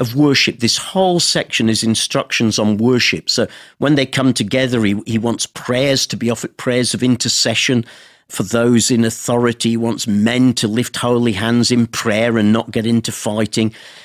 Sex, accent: male, British